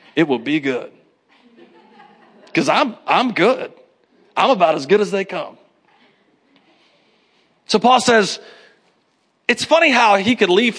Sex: male